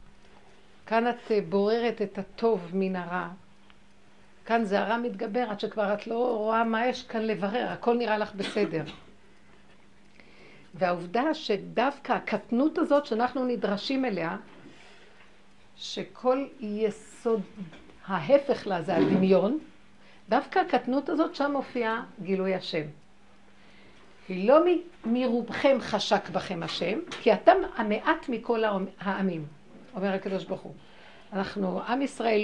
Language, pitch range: Hebrew, 195-245 Hz